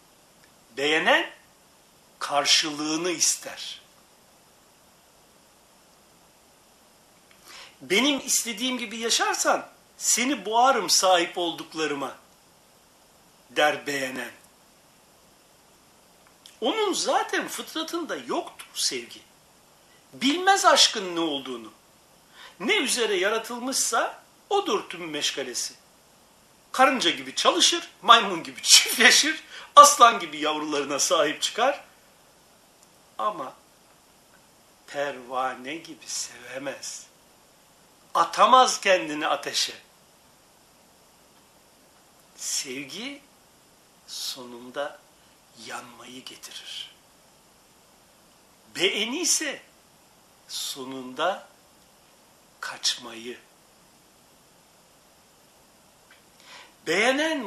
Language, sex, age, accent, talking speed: Turkish, male, 60-79, native, 55 wpm